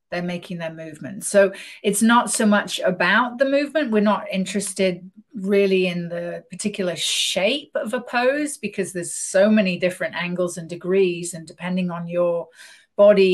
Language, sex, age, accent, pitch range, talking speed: English, female, 40-59, British, 180-225 Hz, 160 wpm